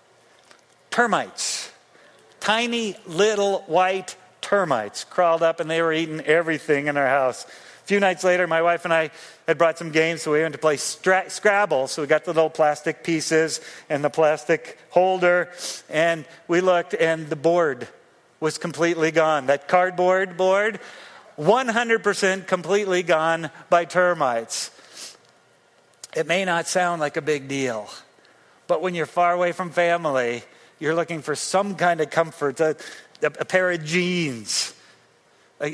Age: 40-59